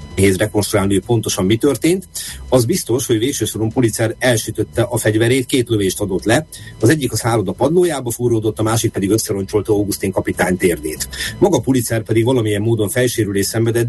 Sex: male